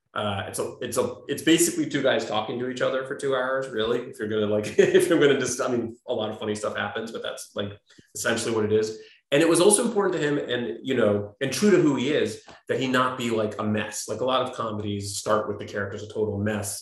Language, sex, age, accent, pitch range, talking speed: English, male, 30-49, American, 105-125 Hz, 270 wpm